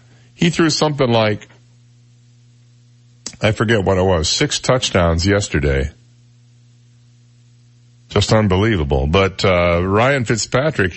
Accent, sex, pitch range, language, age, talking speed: American, male, 100-120 Hz, English, 50-69, 100 wpm